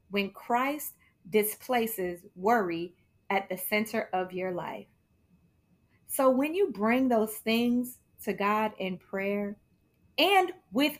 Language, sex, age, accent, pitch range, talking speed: English, female, 30-49, American, 205-270 Hz, 120 wpm